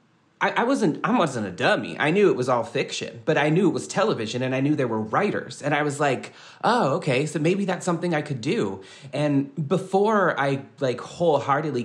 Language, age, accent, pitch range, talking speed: English, 30-49, American, 110-140 Hz, 215 wpm